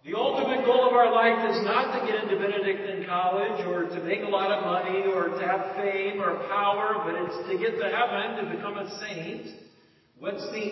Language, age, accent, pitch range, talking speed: English, 50-69, American, 165-220 Hz, 215 wpm